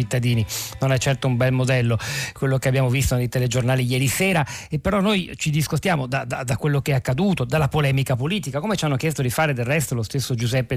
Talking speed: 225 wpm